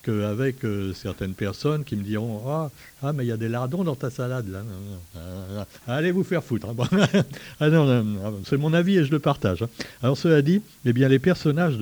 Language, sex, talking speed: French, male, 220 wpm